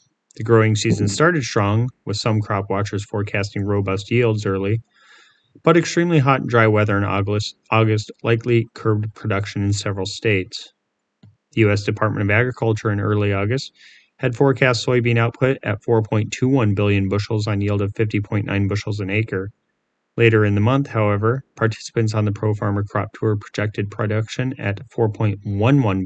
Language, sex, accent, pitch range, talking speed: English, male, American, 100-115 Hz, 150 wpm